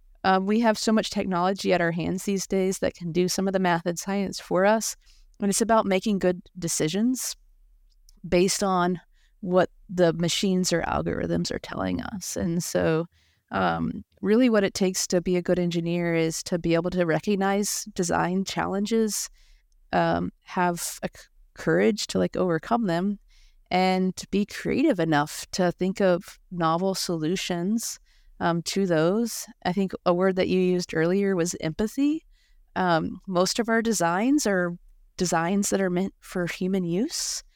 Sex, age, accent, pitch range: female, 30-49, American, 170-205 Hz